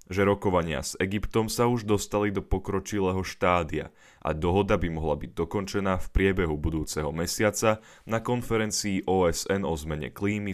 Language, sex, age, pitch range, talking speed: Slovak, male, 10-29, 85-105 Hz, 150 wpm